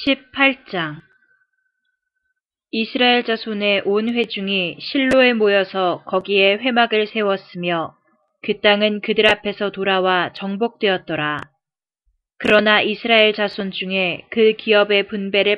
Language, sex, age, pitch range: Korean, female, 20-39, 185-220 Hz